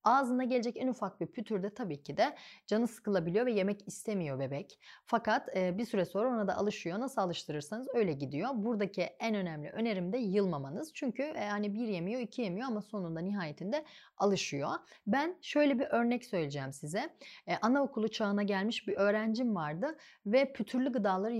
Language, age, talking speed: Turkish, 30-49, 165 wpm